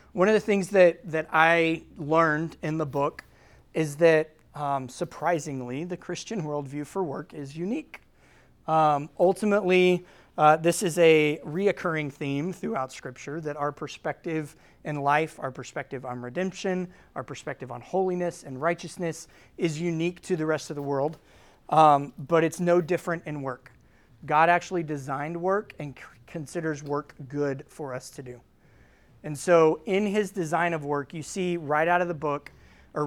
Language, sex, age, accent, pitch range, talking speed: English, male, 30-49, American, 140-175 Hz, 165 wpm